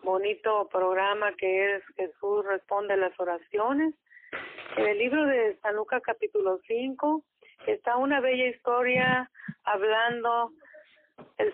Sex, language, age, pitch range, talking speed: female, Spanish, 40-59, 215-285 Hz, 115 wpm